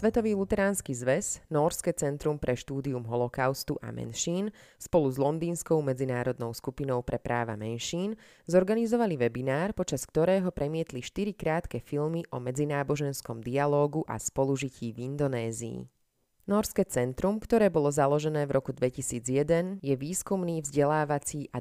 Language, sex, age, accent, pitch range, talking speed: English, female, 20-39, Czech, 125-165 Hz, 125 wpm